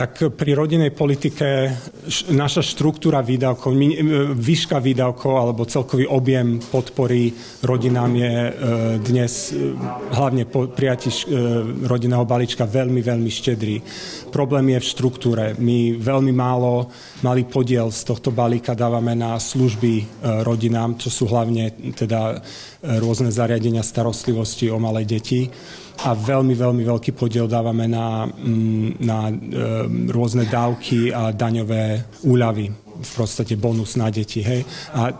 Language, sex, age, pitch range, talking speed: Slovak, male, 40-59, 115-130 Hz, 130 wpm